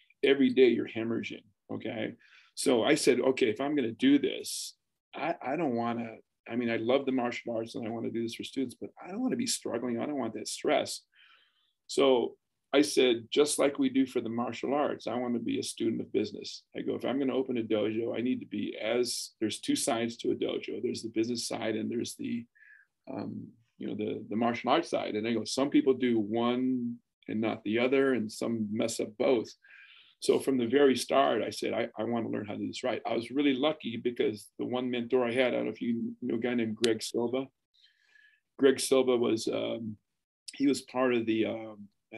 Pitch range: 115-145 Hz